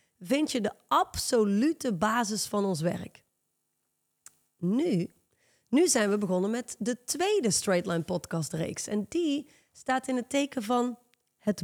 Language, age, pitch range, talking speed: Dutch, 30-49, 200-275 Hz, 140 wpm